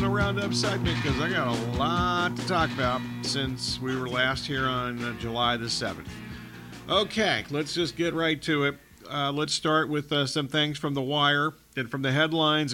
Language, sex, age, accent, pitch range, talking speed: English, male, 50-69, American, 130-160 Hz, 200 wpm